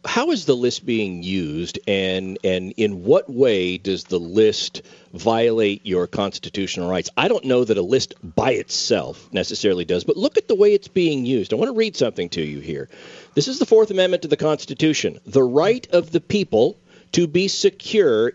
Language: English